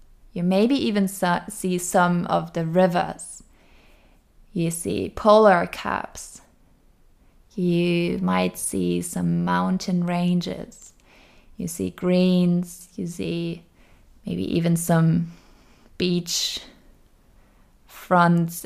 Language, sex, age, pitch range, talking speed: English, female, 20-39, 165-185 Hz, 90 wpm